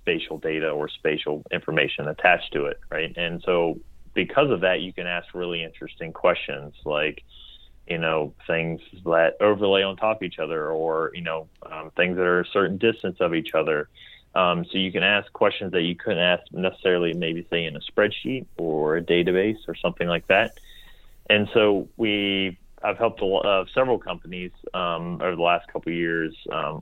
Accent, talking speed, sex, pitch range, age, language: American, 190 wpm, male, 80-95 Hz, 30-49, English